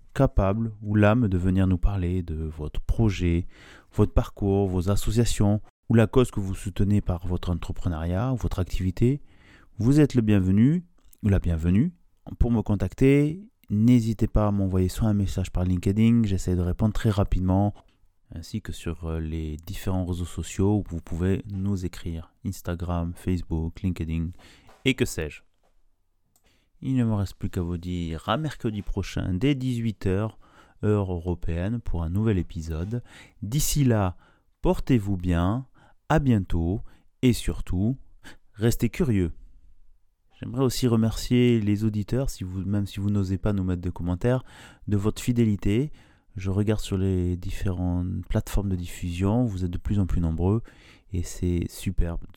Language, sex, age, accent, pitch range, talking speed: French, male, 30-49, French, 90-110 Hz, 150 wpm